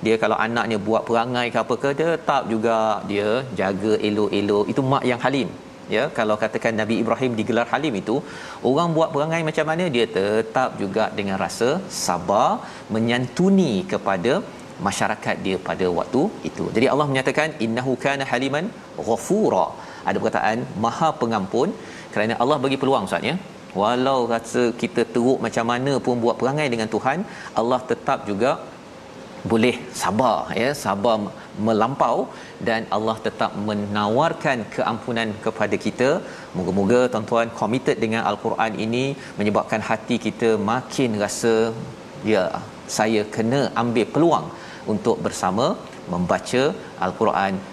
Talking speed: 135 wpm